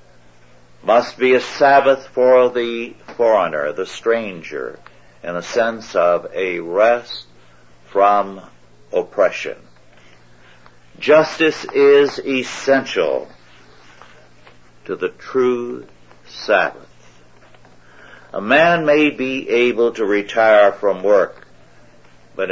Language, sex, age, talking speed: English, male, 60-79, 90 wpm